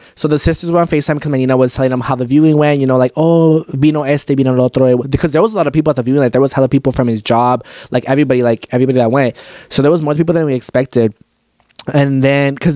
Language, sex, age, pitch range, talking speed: English, male, 20-39, 130-165 Hz, 285 wpm